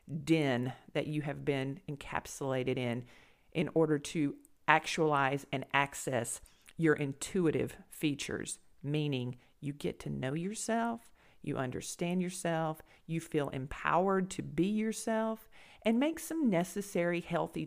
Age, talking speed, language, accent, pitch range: 50-69, 120 wpm, English, American, 145-190 Hz